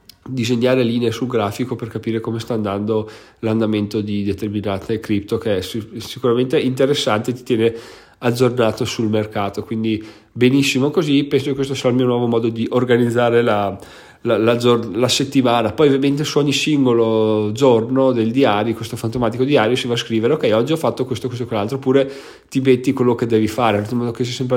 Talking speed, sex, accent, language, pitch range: 180 wpm, male, native, Italian, 115-135 Hz